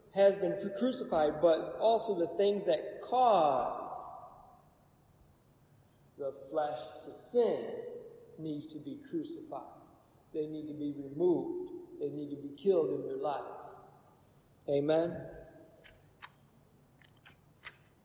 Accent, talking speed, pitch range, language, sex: American, 105 wpm, 150-210 Hz, English, male